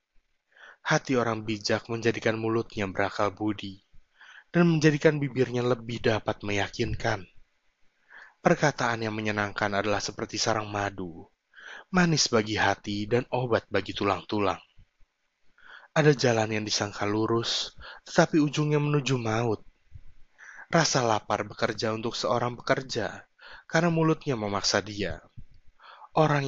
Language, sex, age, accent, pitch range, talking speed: Indonesian, male, 20-39, native, 105-130 Hz, 105 wpm